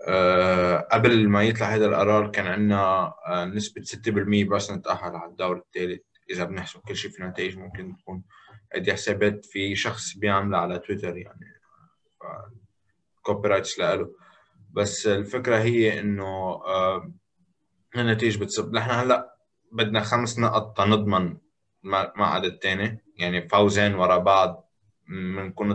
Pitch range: 95-105 Hz